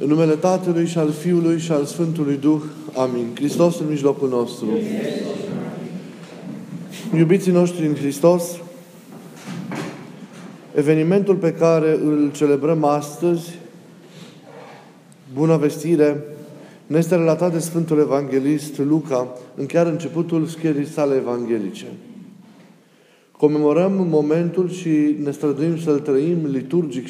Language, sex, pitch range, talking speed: Romanian, male, 140-170 Hz, 105 wpm